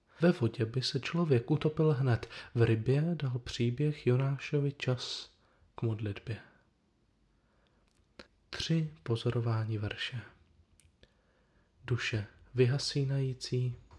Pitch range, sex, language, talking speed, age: 105-125 Hz, male, Czech, 85 wpm, 20-39